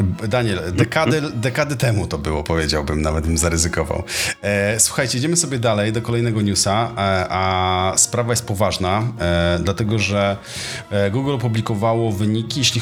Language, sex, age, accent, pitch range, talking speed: Polish, male, 40-59, native, 100-120 Hz, 130 wpm